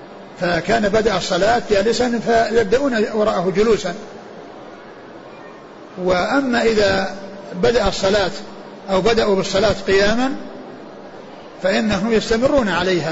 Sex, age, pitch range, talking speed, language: male, 50-69, 180-215 Hz, 80 wpm, Arabic